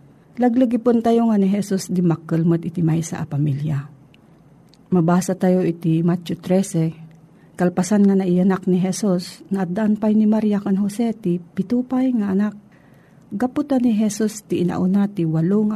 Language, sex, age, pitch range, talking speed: Filipino, female, 50-69, 170-225 Hz, 145 wpm